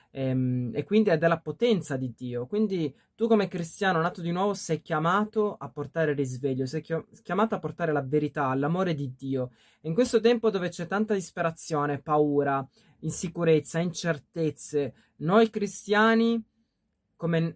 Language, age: Italian, 20-39